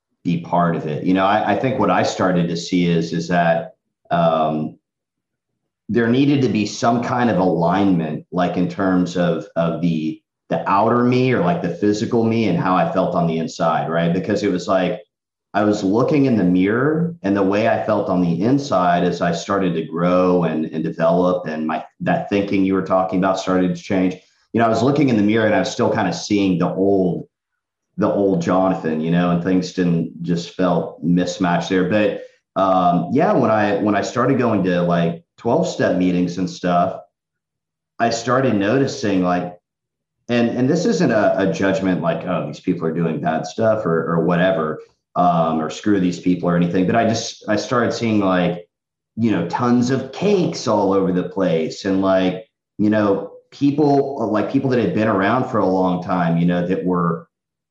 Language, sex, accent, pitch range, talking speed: English, male, American, 85-110 Hz, 200 wpm